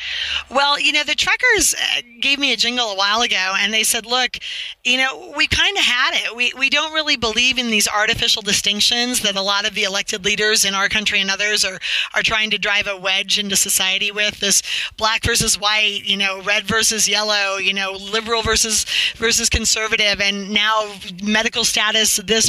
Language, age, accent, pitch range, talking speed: English, 40-59, American, 205-245 Hz, 195 wpm